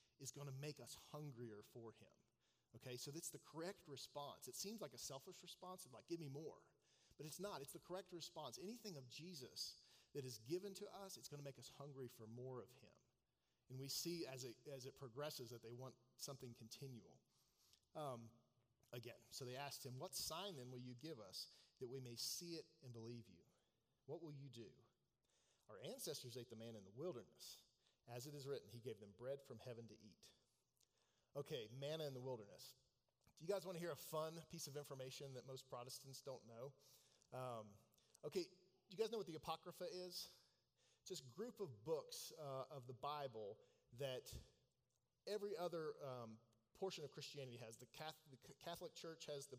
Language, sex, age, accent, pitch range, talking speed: English, male, 40-59, American, 125-160 Hz, 190 wpm